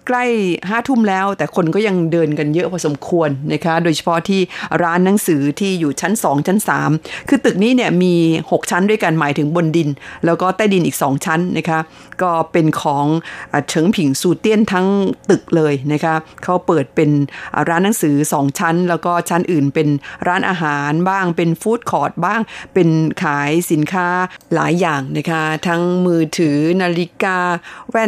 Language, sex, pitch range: Thai, female, 155-190 Hz